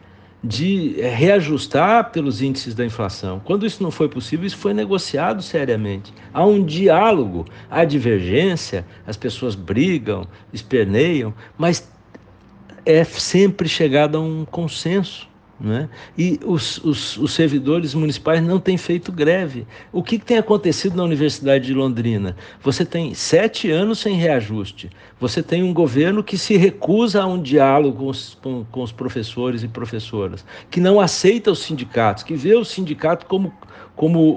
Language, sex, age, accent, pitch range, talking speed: Portuguese, male, 60-79, Brazilian, 120-180 Hz, 145 wpm